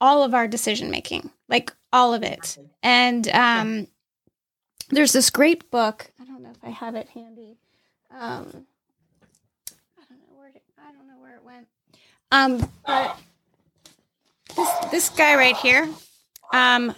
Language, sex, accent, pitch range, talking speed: English, female, American, 225-275 Hz, 150 wpm